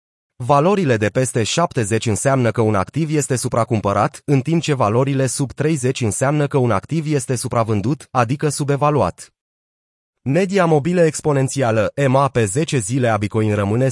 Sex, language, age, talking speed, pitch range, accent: male, Romanian, 30-49, 145 wpm, 115-150 Hz, native